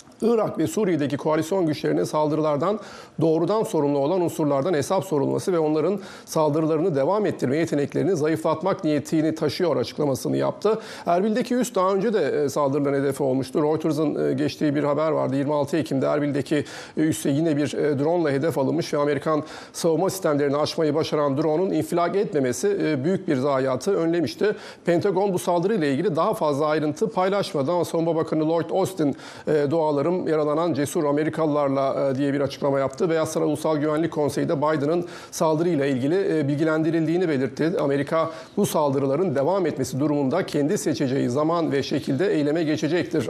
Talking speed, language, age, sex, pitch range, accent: 145 wpm, Turkish, 40-59, male, 150-180 Hz, native